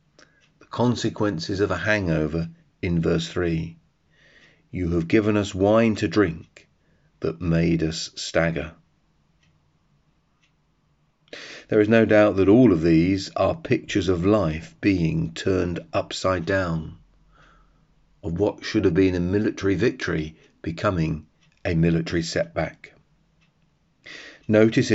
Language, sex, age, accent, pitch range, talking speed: English, male, 40-59, British, 85-105 Hz, 115 wpm